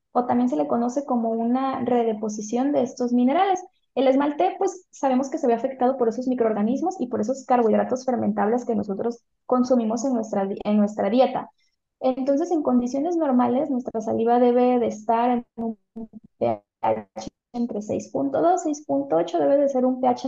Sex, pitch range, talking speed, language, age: female, 235-285 Hz, 165 wpm, Spanish, 20-39